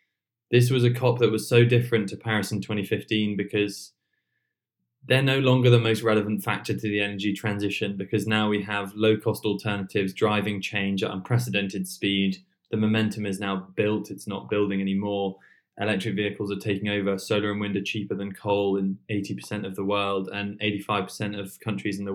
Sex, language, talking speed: male, English, 180 wpm